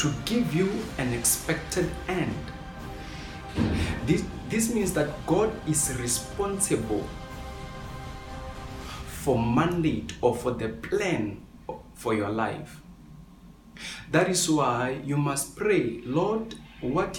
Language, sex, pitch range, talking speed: English, male, 110-165 Hz, 105 wpm